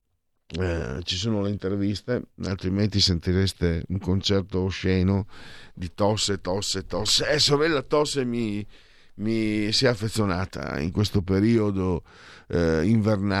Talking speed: 115 wpm